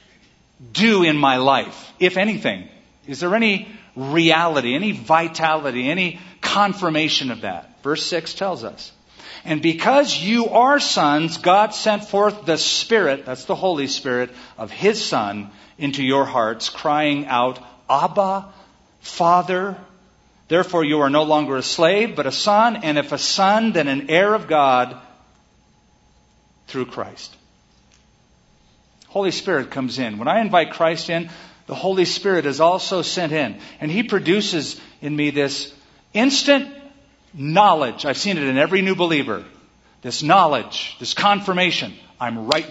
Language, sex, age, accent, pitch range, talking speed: English, male, 50-69, American, 145-200 Hz, 145 wpm